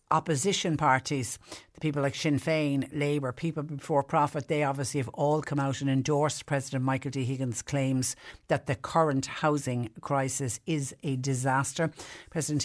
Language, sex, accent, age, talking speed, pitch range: English, female, Irish, 60-79, 155 wpm, 130-150 Hz